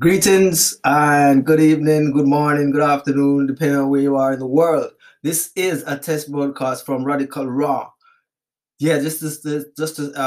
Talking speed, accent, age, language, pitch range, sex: 175 wpm, Jamaican, 20-39, English, 125-150 Hz, male